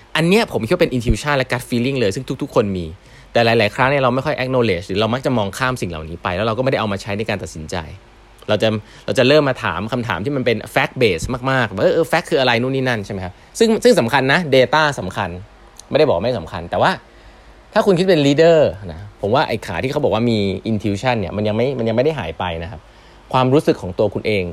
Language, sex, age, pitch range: Thai, male, 20-39, 95-130 Hz